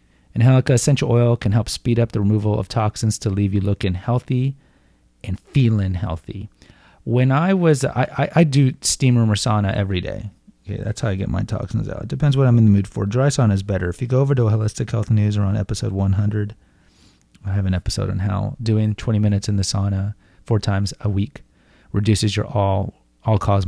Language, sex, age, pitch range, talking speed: English, male, 30-49, 95-120 Hz, 215 wpm